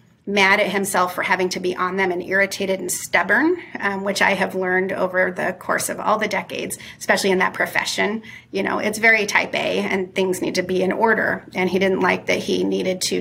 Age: 30-49